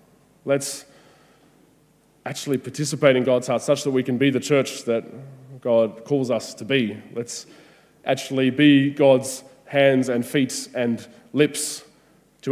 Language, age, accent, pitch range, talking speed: English, 20-39, Australian, 120-145 Hz, 140 wpm